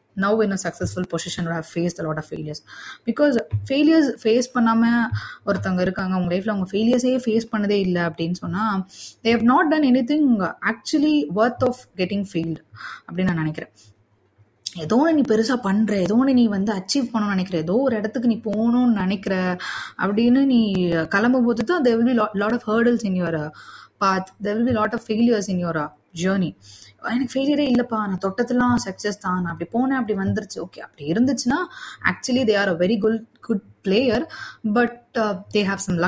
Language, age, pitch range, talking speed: Tamil, 20-39, 185-245 Hz, 155 wpm